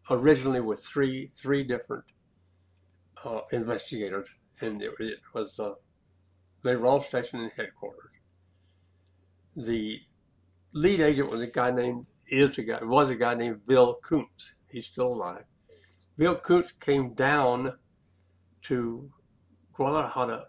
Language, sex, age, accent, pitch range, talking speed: English, male, 60-79, American, 90-130 Hz, 125 wpm